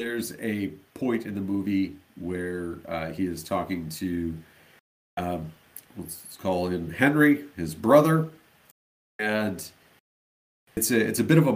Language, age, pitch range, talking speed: English, 50-69, 85-110 Hz, 140 wpm